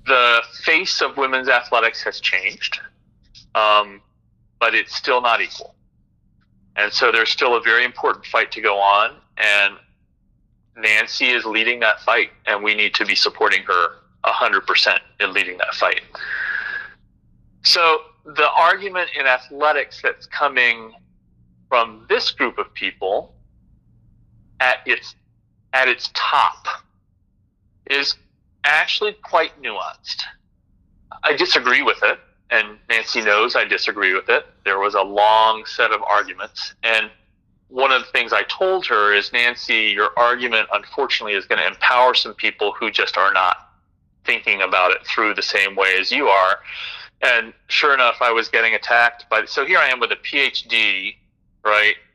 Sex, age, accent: male, 40-59, American